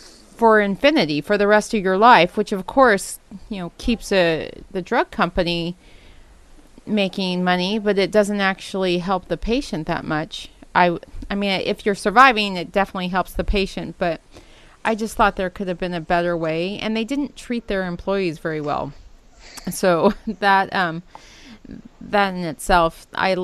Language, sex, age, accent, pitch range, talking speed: English, female, 30-49, American, 180-215 Hz, 165 wpm